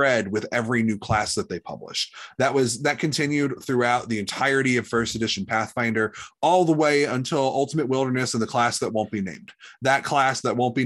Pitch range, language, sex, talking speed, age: 110-135 Hz, English, male, 200 wpm, 30-49